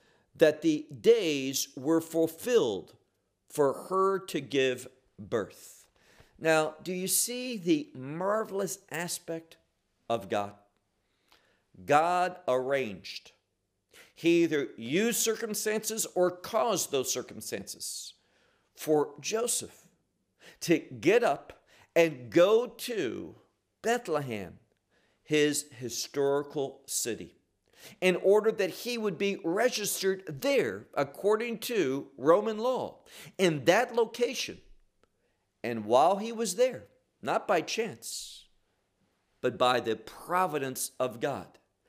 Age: 50-69